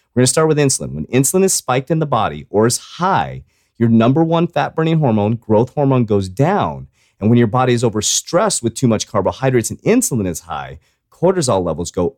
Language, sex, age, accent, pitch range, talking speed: English, male, 30-49, American, 100-145 Hz, 205 wpm